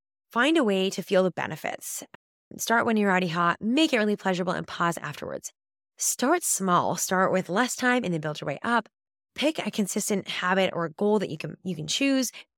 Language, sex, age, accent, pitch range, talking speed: English, female, 20-39, American, 170-235 Hz, 205 wpm